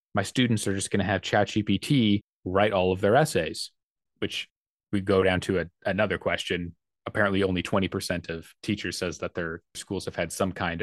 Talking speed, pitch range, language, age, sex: 200 wpm, 90-115 Hz, English, 30-49, male